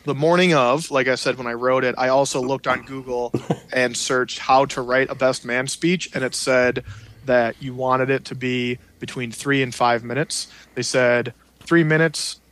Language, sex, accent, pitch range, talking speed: English, male, American, 125-140 Hz, 200 wpm